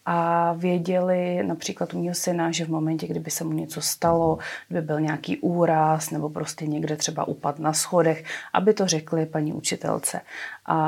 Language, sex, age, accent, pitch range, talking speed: Czech, female, 30-49, native, 160-180 Hz, 170 wpm